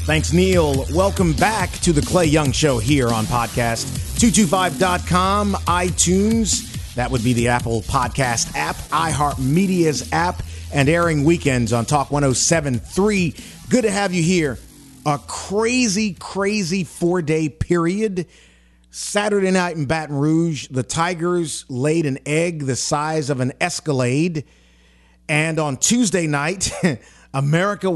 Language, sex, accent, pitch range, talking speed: English, male, American, 120-170 Hz, 125 wpm